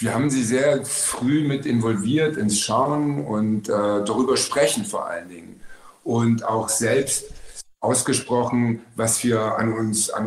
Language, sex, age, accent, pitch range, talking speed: German, male, 50-69, German, 110-125 Hz, 145 wpm